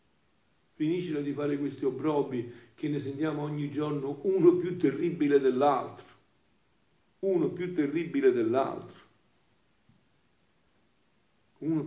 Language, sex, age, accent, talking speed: Italian, male, 50-69, native, 95 wpm